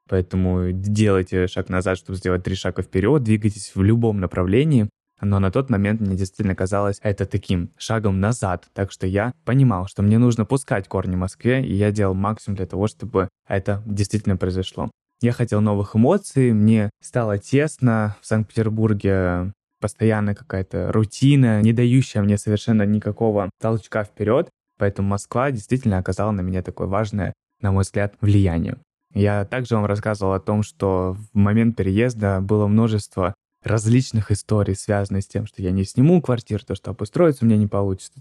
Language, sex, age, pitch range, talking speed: Russian, male, 20-39, 95-115 Hz, 165 wpm